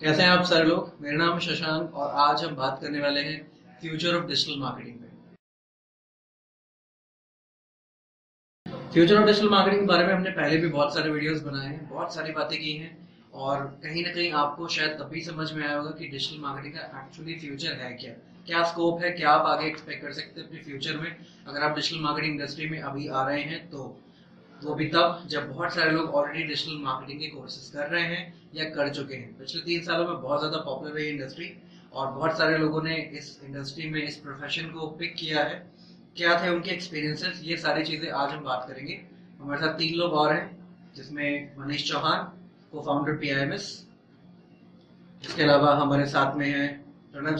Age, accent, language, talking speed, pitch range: 30-49, native, Hindi, 170 wpm, 145-170 Hz